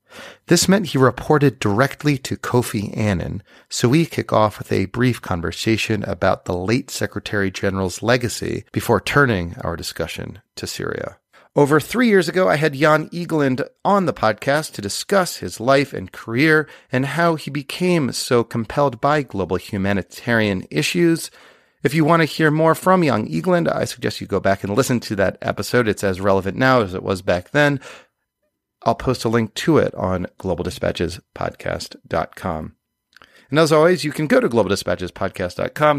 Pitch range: 100-150 Hz